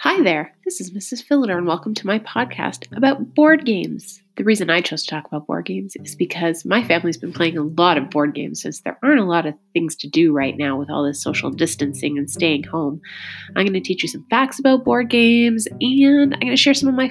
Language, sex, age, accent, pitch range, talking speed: English, female, 30-49, American, 150-235 Hz, 250 wpm